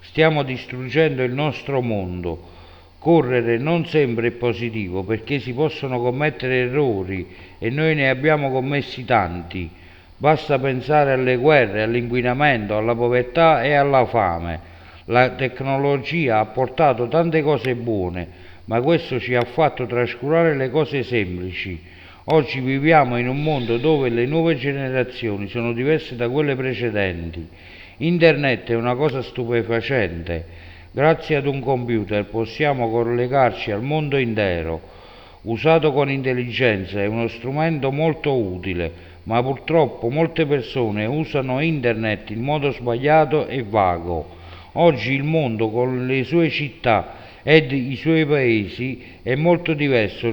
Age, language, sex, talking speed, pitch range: 60-79, Italian, male, 130 wpm, 105-145 Hz